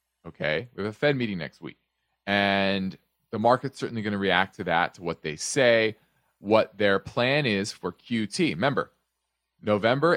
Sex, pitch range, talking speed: male, 95-130 Hz, 170 wpm